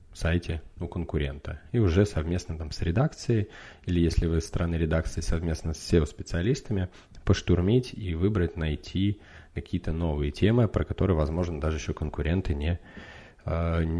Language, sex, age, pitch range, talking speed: Russian, male, 20-39, 85-105 Hz, 140 wpm